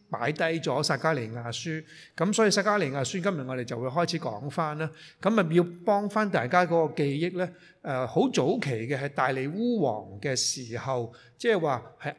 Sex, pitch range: male, 130-180 Hz